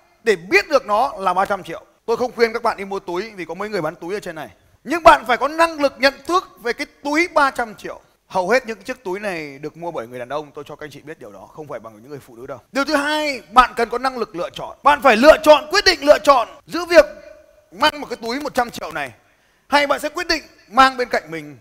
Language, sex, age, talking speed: Vietnamese, male, 20-39, 280 wpm